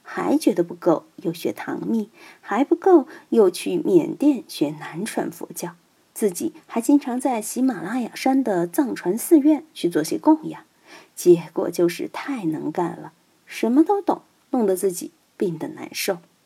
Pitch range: 200-320 Hz